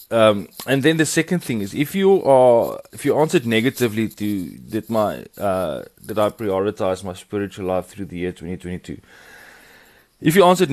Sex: male